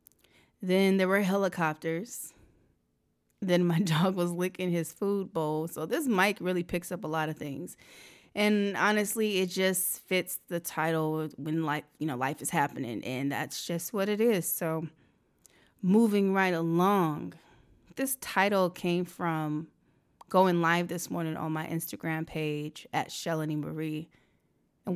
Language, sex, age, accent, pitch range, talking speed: English, female, 20-39, American, 155-180 Hz, 150 wpm